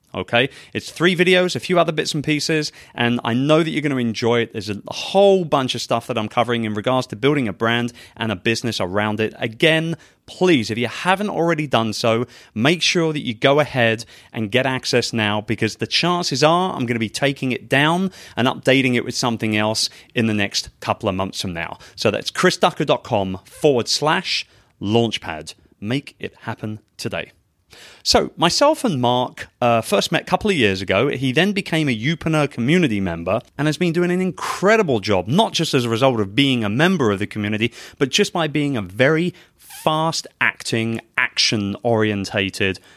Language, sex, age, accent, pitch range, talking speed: English, male, 30-49, British, 110-155 Hz, 195 wpm